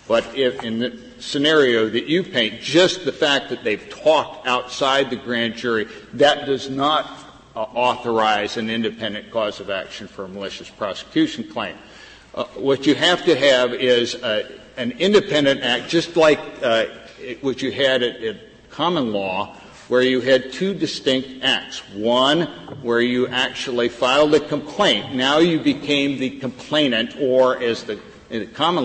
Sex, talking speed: male, 160 wpm